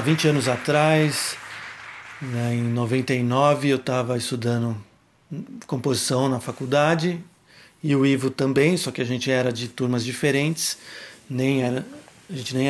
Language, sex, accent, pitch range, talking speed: English, male, Brazilian, 125-155 Hz, 140 wpm